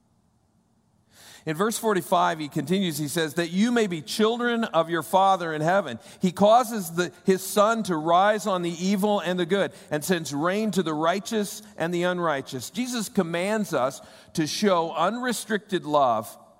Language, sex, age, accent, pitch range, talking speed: English, male, 50-69, American, 150-195 Hz, 165 wpm